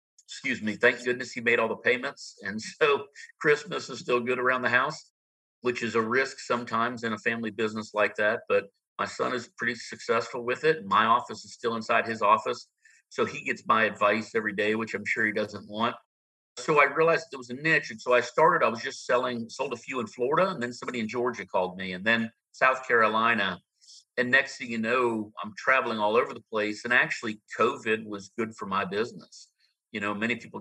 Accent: American